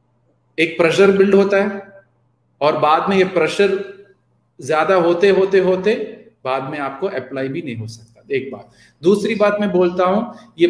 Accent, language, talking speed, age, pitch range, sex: native, Hindi, 170 wpm, 30-49, 175-215 Hz, male